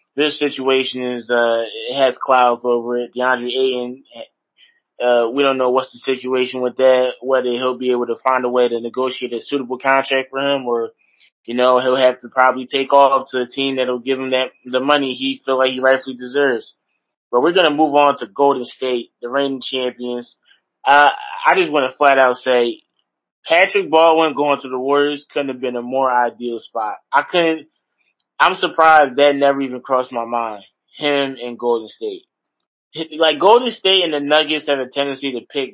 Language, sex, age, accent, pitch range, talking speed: English, male, 20-39, American, 125-140 Hz, 195 wpm